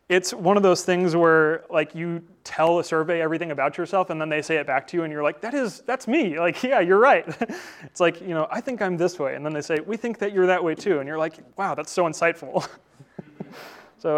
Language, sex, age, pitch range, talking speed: English, male, 30-49, 150-175 Hz, 265 wpm